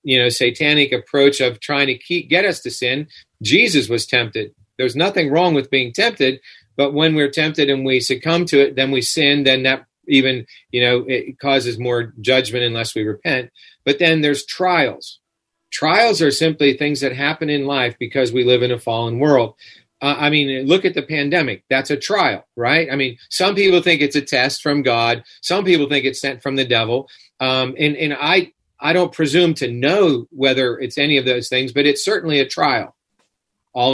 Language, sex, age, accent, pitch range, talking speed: English, male, 40-59, American, 125-150 Hz, 200 wpm